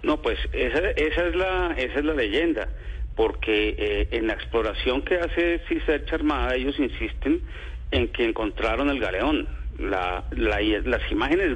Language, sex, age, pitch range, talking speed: Spanish, male, 40-59, 105-165 Hz, 155 wpm